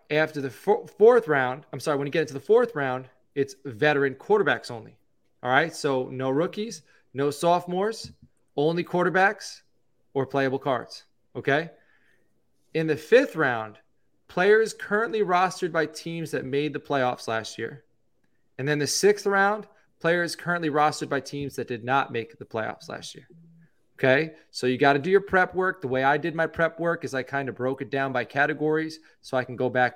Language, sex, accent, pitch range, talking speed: English, male, American, 130-165 Hz, 185 wpm